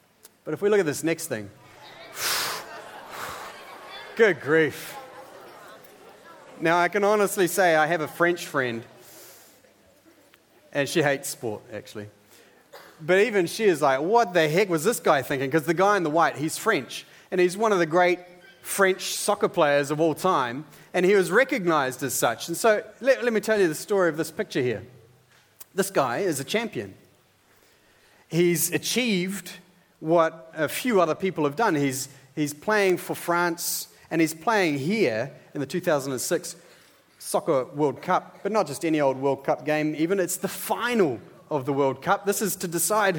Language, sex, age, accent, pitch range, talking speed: English, male, 30-49, Australian, 155-210 Hz, 175 wpm